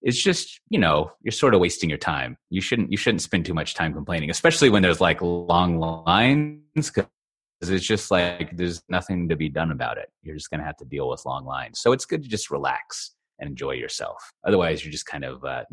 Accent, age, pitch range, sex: American, 30-49, 80-110 Hz, male